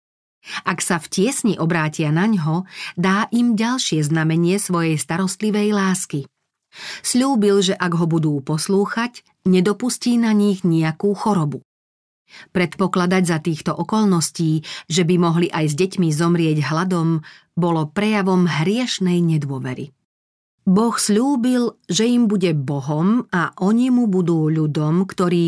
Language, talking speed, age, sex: Slovak, 125 wpm, 40-59, female